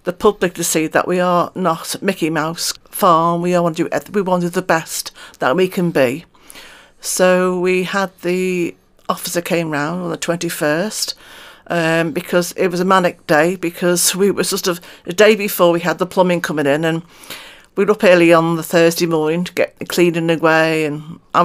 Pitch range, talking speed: 165-185 Hz, 205 wpm